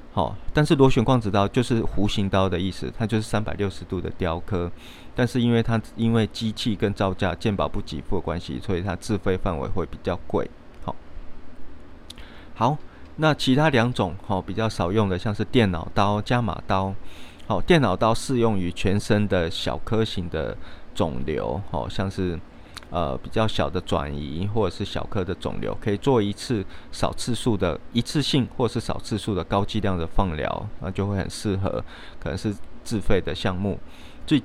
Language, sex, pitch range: Chinese, male, 85-110 Hz